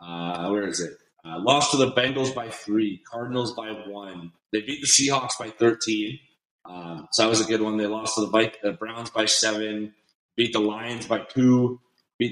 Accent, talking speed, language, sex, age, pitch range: American, 205 wpm, English, male, 30-49, 100-120 Hz